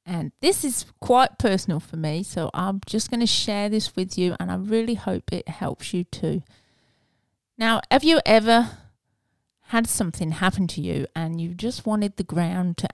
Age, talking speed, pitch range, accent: 40-59, 185 wpm, 165-205 Hz, British